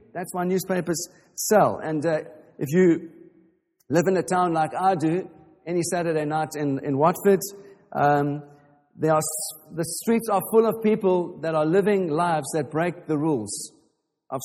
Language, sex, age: English, male, 50-69